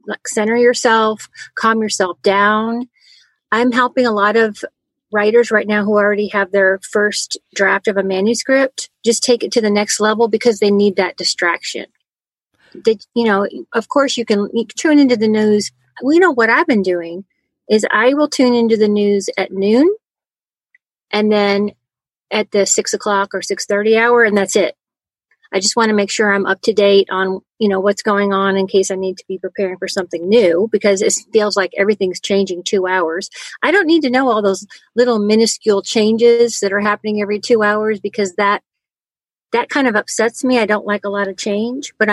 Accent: American